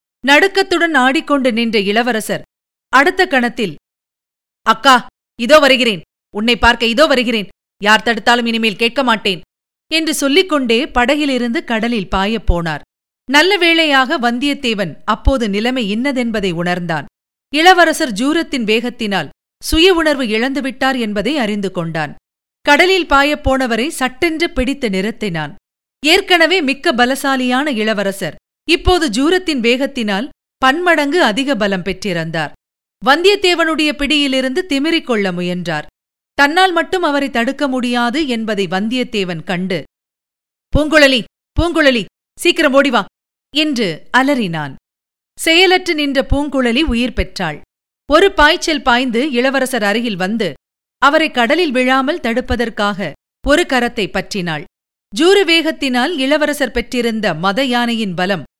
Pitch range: 220-300 Hz